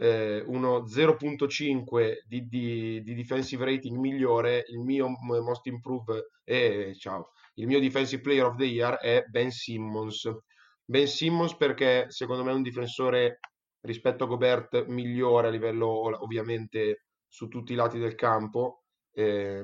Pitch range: 115-130 Hz